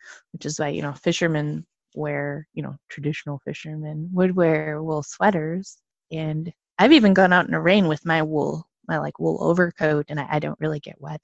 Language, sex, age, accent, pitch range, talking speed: English, female, 20-39, American, 155-195 Hz, 200 wpm